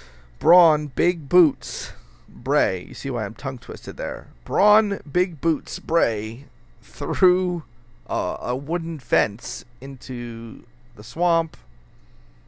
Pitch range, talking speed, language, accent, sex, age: 110-140 Hz, 105 wpm, English, American, male, 40-59